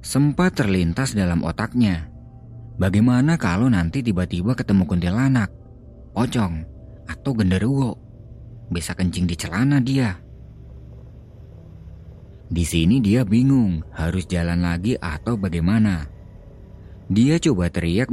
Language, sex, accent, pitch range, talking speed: Indonesian, male, native, 80-110 Hz, 100 wpm